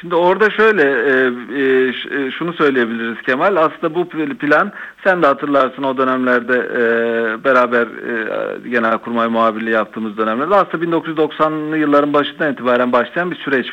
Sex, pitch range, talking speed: male, 115-155 Hz, 140 wpm